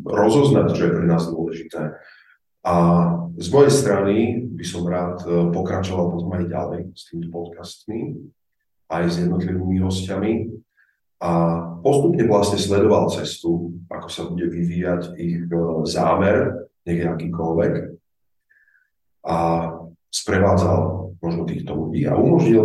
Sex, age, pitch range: male, 40-59, 85-95 Hz